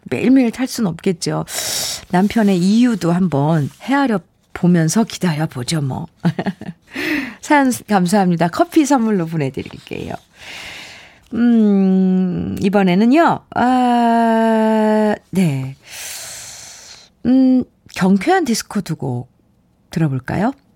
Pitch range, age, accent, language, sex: 165-235 Hz, 50-69, native, Korean, female